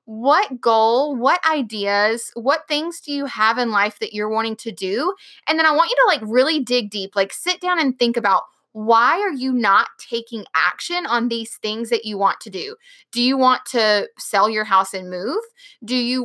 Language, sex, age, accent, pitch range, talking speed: English, female, 20-39, American, 215-315 Hz, 210 wpm